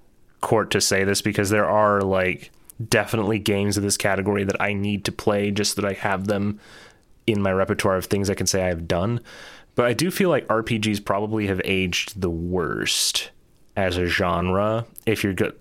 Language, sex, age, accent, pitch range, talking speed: English, male, 30-49, American, 90-105 Hz, 195 wpm